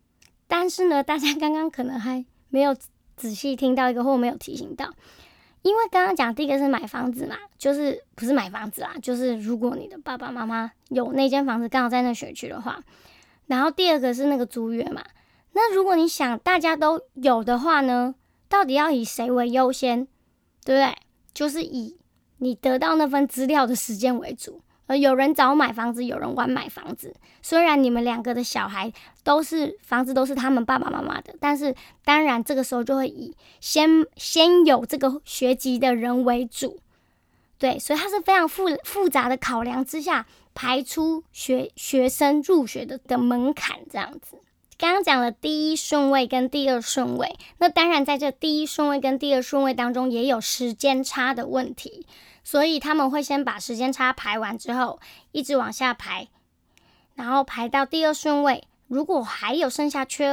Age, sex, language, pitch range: 10-29, male, Chinese, 250-300 Hz